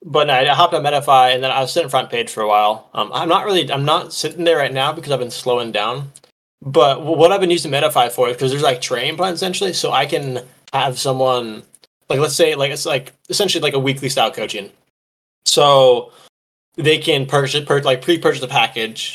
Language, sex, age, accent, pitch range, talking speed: English, male, 20-39, American, 125-170 Hz, 225 wpm